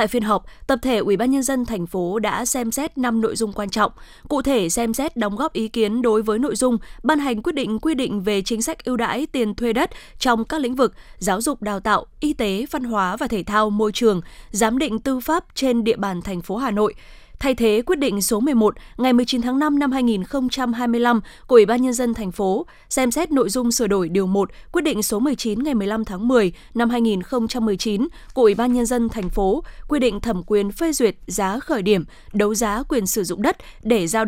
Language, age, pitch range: Vietnamese, 20-39, 210-265 Hz